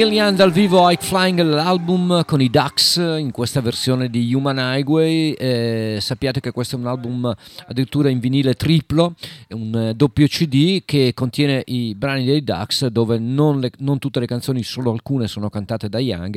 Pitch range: 110-140 Hz